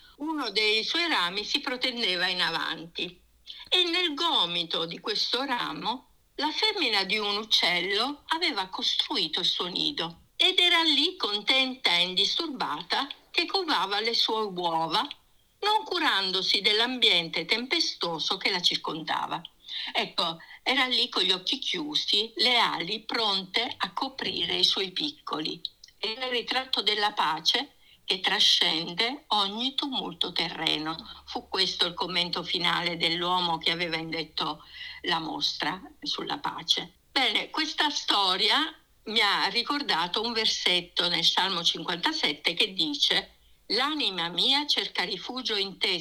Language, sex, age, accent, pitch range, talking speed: Italian, female, 50-69, native, 175-290 Hz, 130 wpm